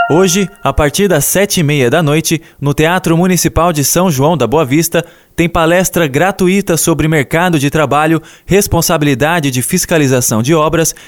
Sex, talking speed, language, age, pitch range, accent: male, 160 wpm, Portuguese, 20-39, 150-175 Hz, Brazilian